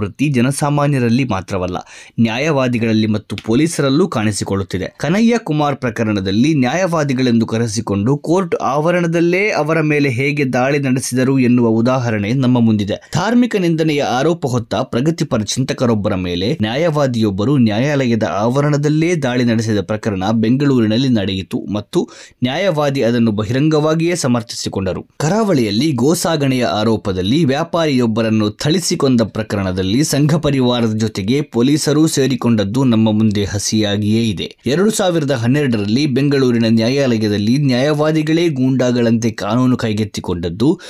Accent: native